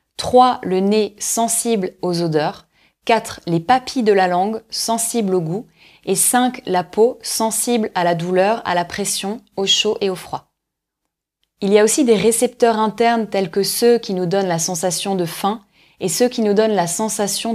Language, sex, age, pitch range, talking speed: French, female, 20-39, 185-230 Hz, 190 wpm